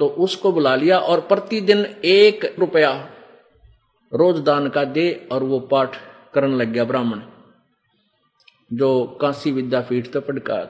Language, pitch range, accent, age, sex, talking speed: Hindi, 150-190 Hz, native, 50-69, male, 135 wpm